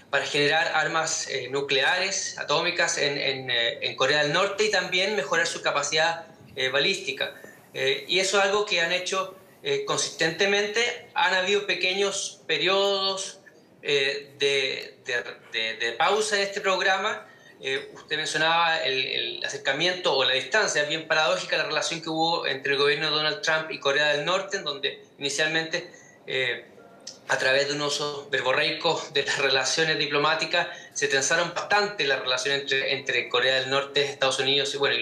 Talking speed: 170 wpm